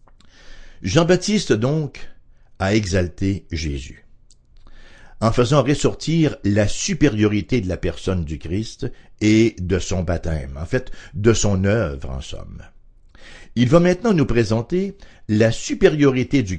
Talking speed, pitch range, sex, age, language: 125 wpm, 95-140 Hz, male, 60-79, English